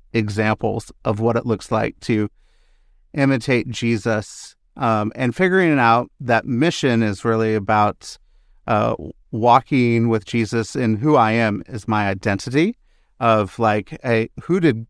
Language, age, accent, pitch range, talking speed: English, 40-59, American, 110-130 Hz, 135 wpm